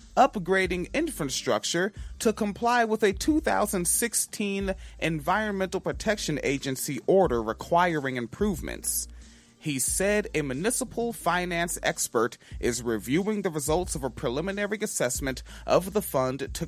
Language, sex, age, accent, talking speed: English, male, 30-49, American, 110 wpm